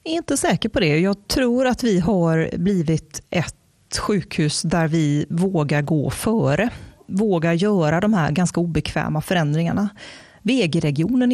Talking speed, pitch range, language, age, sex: 145 wpm, 160-210 Hz, Swedish, 30-49, female